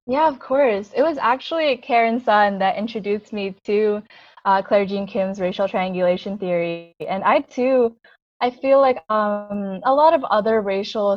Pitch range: 190-230 Hz